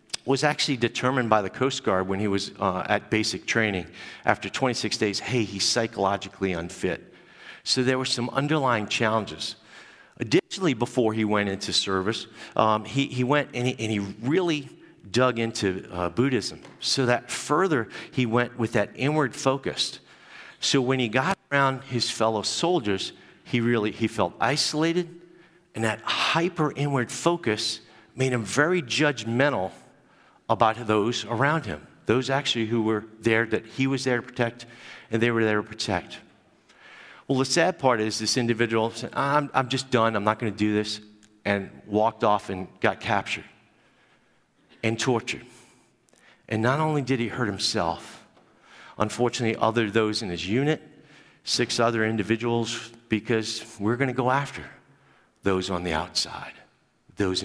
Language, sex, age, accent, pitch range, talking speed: English, male, 50-69, American, 105-130 Hz, 155 wpm